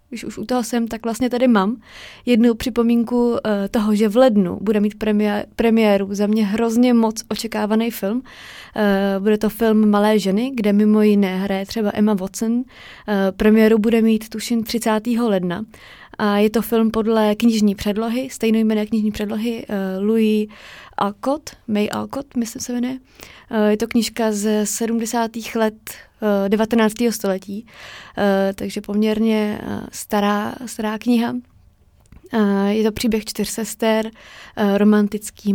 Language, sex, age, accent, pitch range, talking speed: Czech, female, 20-39, native, 205-230 Hz, 130 wpm